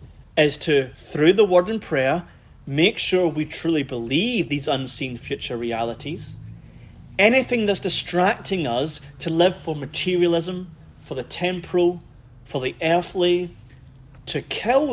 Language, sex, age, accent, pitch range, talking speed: English, male, 30-49, British, 110-175 Hz, 130 wpm